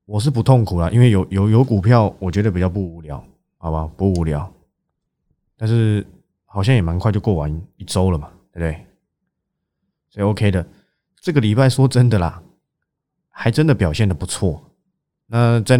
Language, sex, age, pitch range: Chinese, male, 20-39, 90-115 Hz